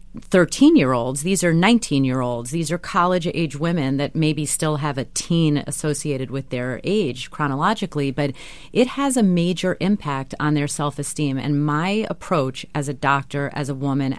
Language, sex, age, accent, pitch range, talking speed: English, female, 30-49, American, 135-170 Hz, 155 wpm